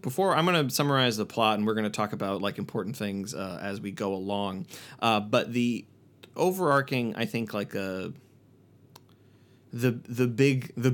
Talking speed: 180 wpm